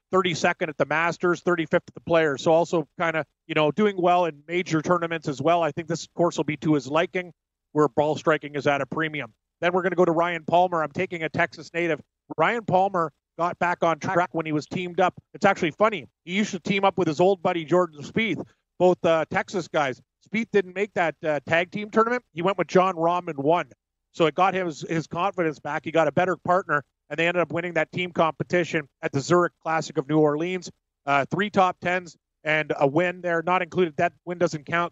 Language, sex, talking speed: English, male, 230 wpm